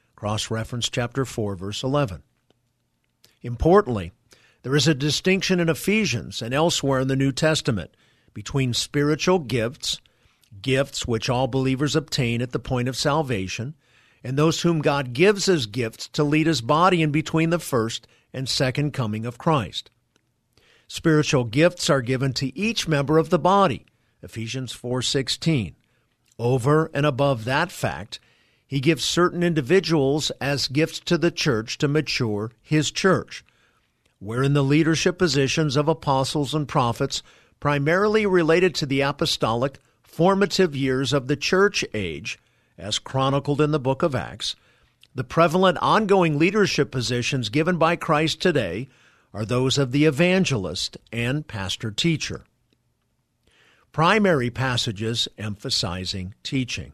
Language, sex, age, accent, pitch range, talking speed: English, male, 50-69, American, 120-160 Hz, 135 wpm